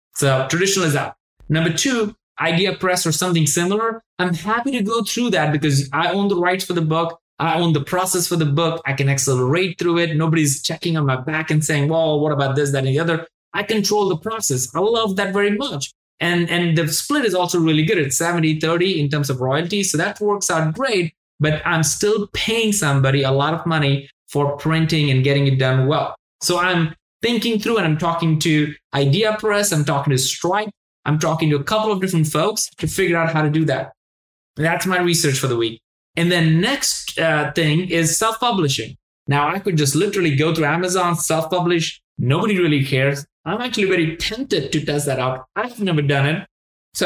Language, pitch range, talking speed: English, 145-185 Hz, 210 wpm